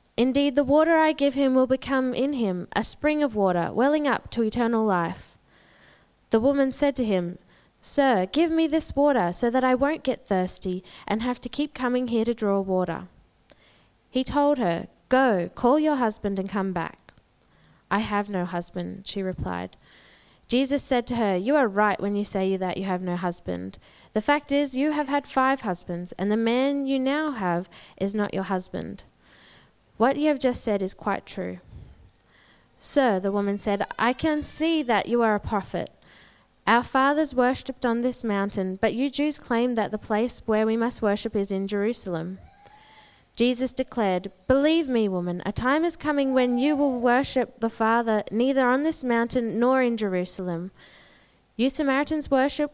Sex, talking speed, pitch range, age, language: female, 180 wpm, 195-265 Hz, 10-29, English